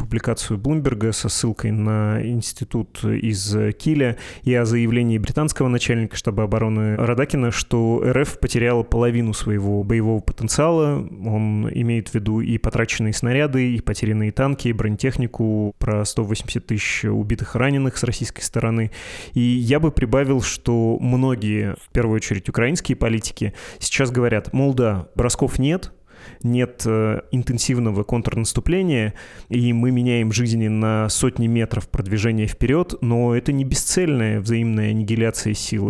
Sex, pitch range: male, 110-130 Hz